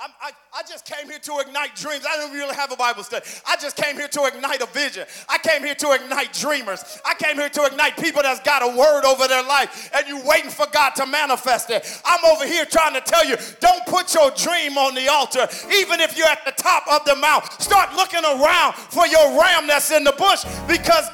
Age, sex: 40-59, male